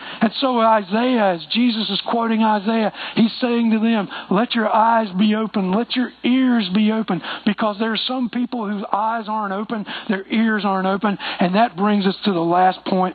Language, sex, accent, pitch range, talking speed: English, male, American, 170-220 Hz, 195 wpm